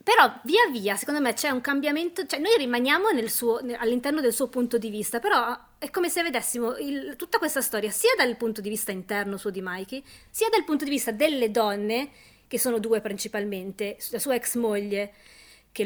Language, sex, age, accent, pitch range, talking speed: Italian, female, 20-39, native, 210-295 Hz, 200 wpm